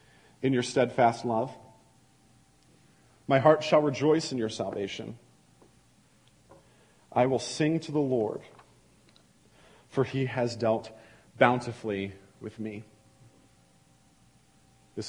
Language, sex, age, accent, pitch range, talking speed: English, male, 40-59, American, 120-150 Hz, 100 wpm